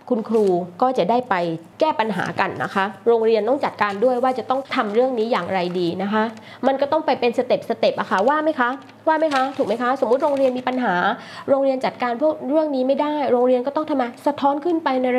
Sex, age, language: female, 20-39, Thai